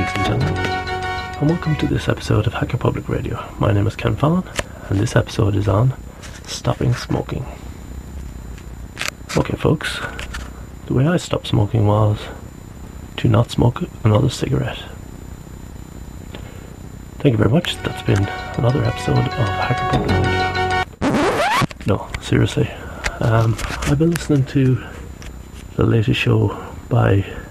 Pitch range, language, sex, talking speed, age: 90-115 Hz, English, male, 125 wpm, 30-49